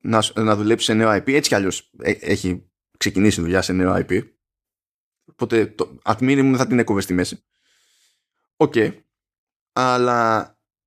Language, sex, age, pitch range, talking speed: Greek, male, 20-39, 110-155 Hz, 155 wpm